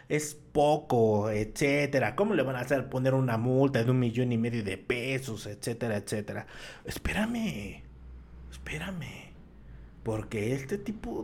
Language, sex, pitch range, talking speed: Spanish, male, 100-135 Hz, 135 wpm